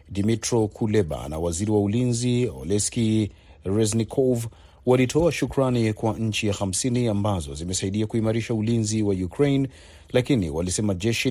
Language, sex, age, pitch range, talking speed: Swahili, male, 40-59, 100-120 Hz, 120 wpm